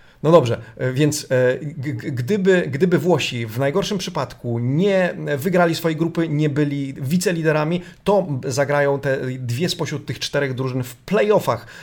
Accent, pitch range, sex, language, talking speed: native, 130-160 Hz, male, Polish, 130 wpm